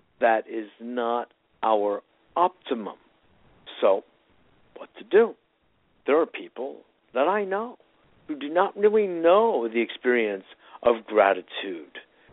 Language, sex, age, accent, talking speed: English, male, 60-79, American, 115 wpm